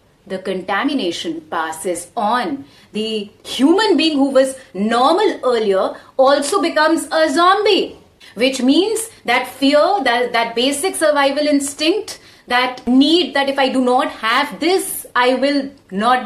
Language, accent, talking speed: English, Indian, 135 wpm